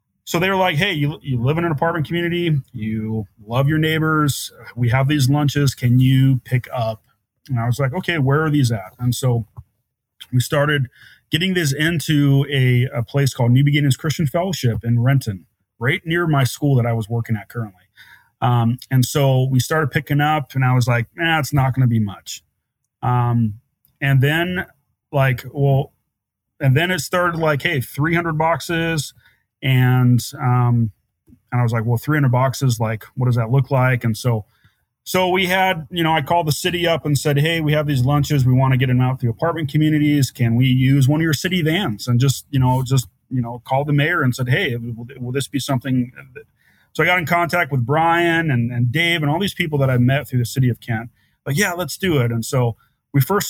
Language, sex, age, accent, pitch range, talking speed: English, male, 30-49, American, 120-155 Hz, 215 wpm